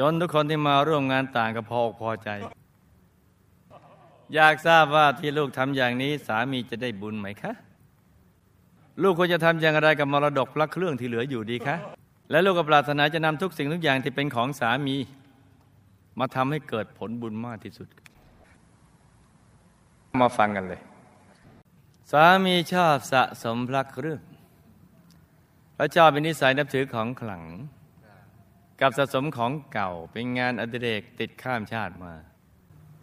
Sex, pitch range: male, 105-145 Hz